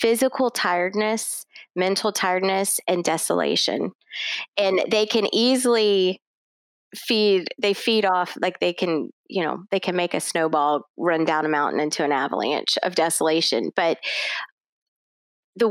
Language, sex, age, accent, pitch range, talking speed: English, female, 20-39, American, 170-205 Hz, 135 wpm